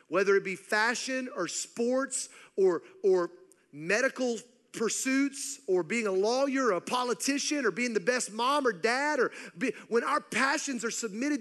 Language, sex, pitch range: English, male, 175-260 Hz